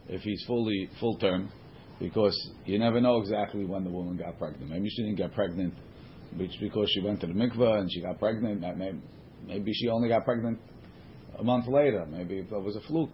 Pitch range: 100-120 Hz